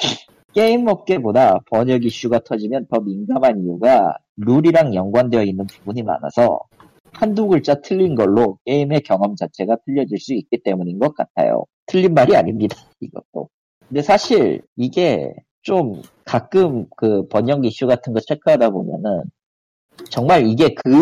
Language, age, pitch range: Korean, 40-59, 110-185 Hz